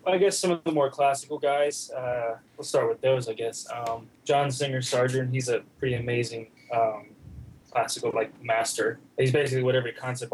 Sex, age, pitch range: male, 20-39, 115-135 Hz